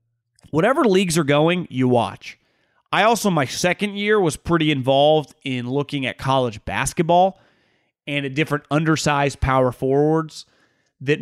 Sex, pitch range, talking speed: male, 125-145 Hz, 140 wpm